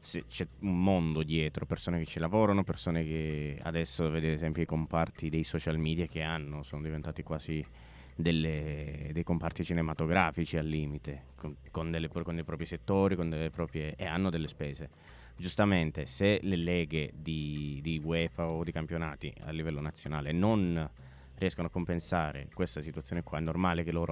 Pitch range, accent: 80-90 Hz, native